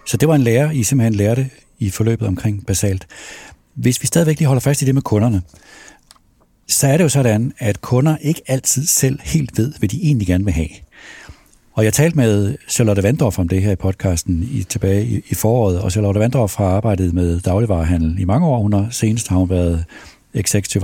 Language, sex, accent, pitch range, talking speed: Danish, male, native, 95-135 Hz, 210 wpm